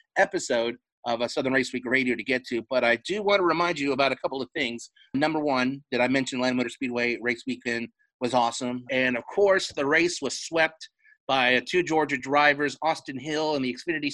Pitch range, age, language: 125-155 Hz, 30-49, English